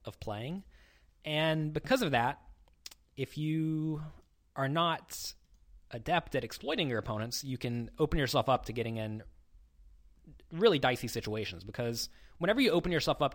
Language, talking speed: English, 145 wpm